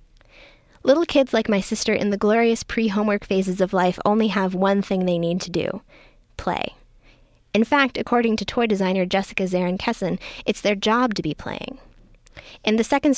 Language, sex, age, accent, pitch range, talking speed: English, female, 10-29, American, 180-215 Hz, 180 wpm